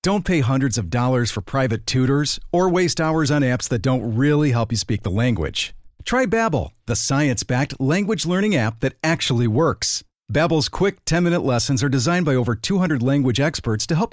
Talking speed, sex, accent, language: 185 wpm, male, American, English